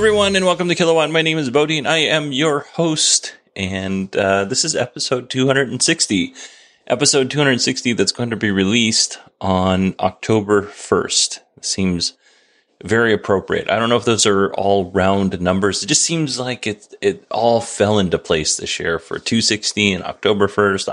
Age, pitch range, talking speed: 30-49, 95-155 Hz, 165 wpm